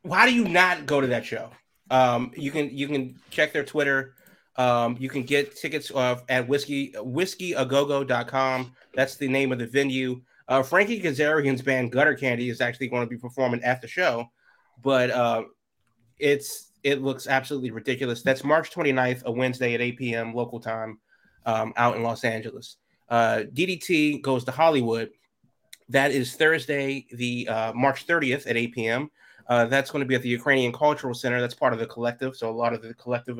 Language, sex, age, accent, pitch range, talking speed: English, male, 30-49, American, 120-140 Hz, 185 wpm